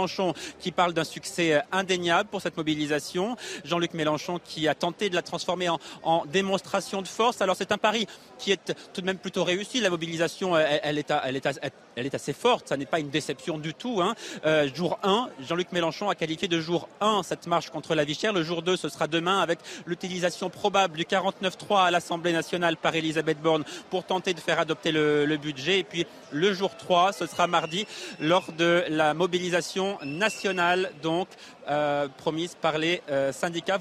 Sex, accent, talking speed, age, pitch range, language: male, French, 200 wpm, 30-49, 160-190 Hz, French